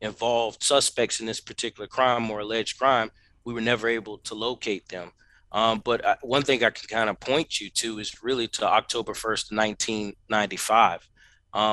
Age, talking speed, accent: 30-49, 170 wpm, American